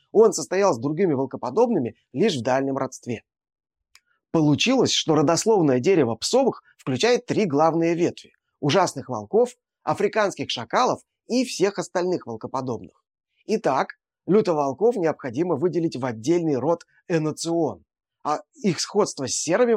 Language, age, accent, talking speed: Russian, 30-49, native, 120 wpm